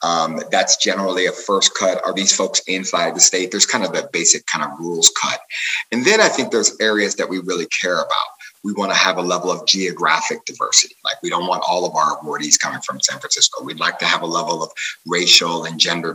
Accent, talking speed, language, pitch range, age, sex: American, 235 wpm, English, 90-105 Hz, 30-49, male